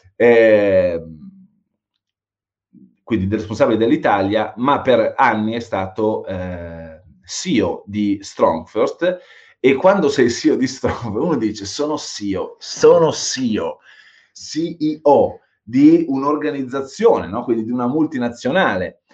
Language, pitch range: Italian, 100-150 Hz